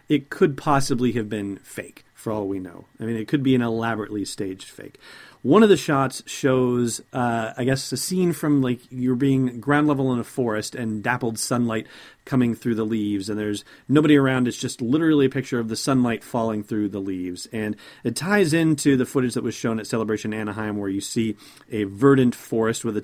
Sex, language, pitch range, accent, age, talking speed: male, English, 110-135 Hz, American, 40-59, 210 wpm